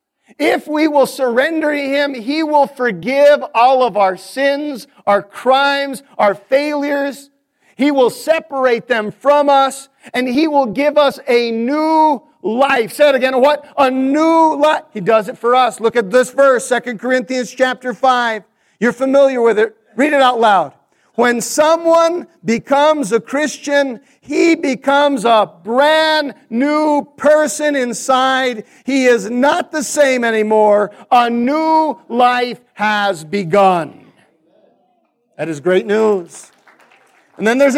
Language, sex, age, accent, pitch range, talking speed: English, male, 50-69, American, 230-285 Hz, 140 wpm